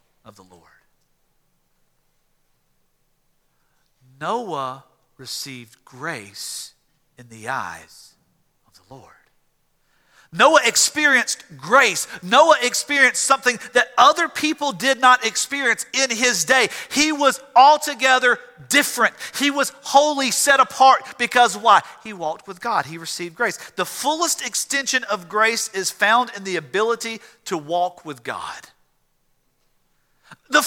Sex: male